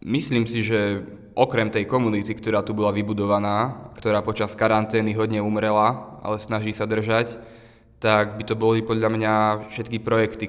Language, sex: Czech, male